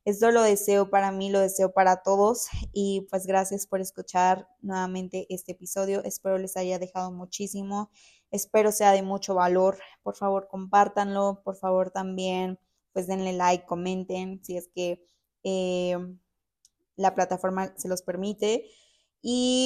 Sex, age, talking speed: female, 20-39, 145 wpm